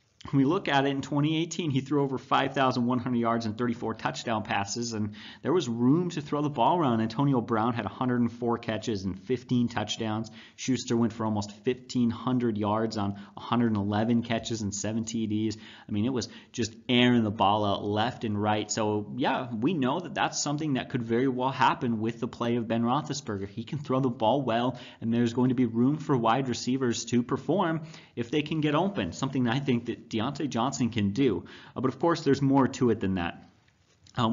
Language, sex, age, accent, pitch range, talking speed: English, male, 30-49, American, 110-130 Hz, 205 wpm